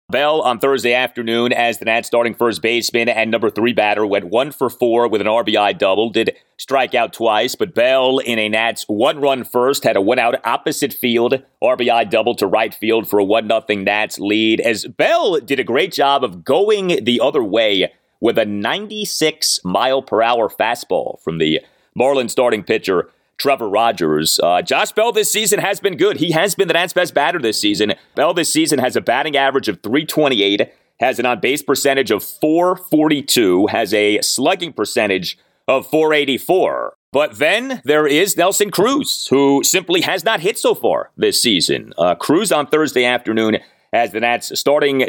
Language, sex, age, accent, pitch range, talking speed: English, male, 30-49, American, 115-160 Hz, 185 wpm